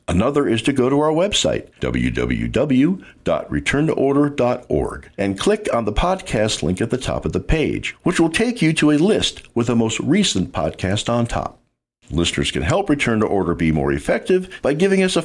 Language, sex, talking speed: English, male, 185 wpm